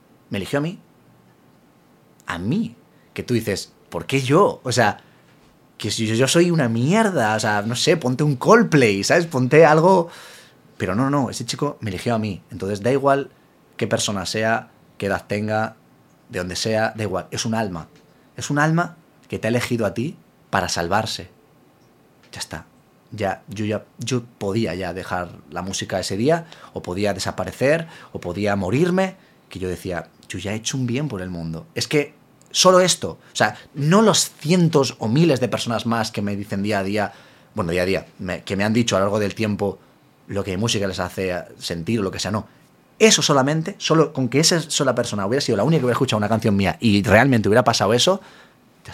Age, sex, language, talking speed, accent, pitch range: 30-49, male, Spanish, 205 wpm, Spanish, 100-140 Hz